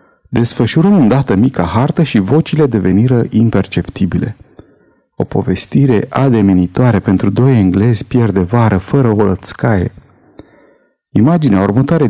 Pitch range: 100-145 Hz